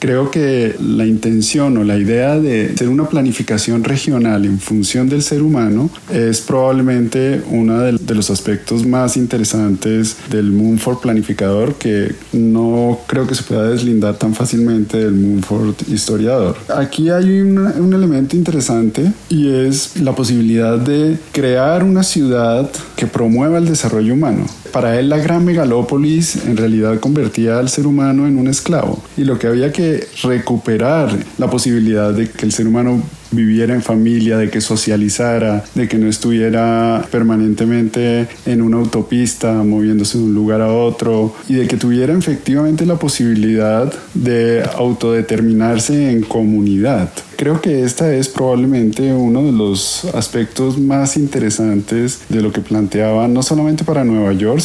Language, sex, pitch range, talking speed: Spanish, male, 110-135 Hz, 150 wpm